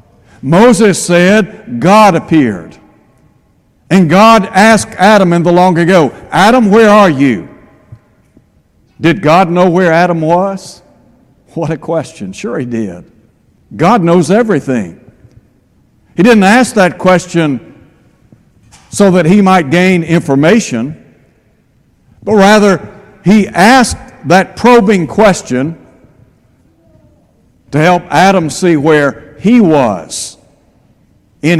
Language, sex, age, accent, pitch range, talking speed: English, male, 60-79, American, 155-200 Hz, 110 wpm